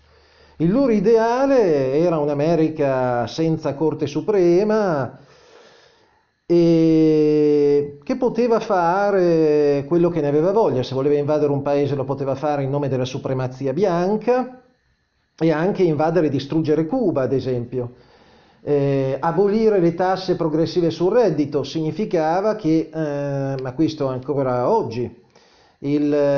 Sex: male